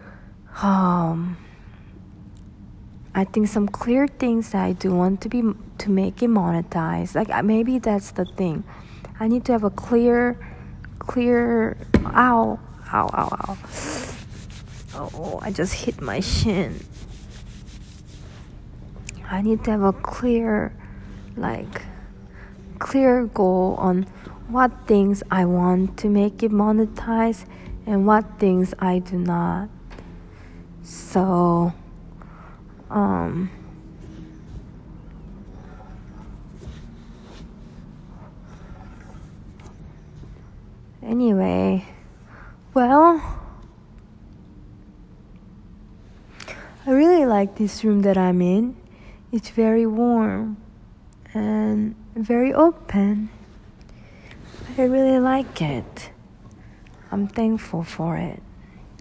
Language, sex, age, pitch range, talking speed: English, female, 40-59, 170-230 Hz, 90 wpm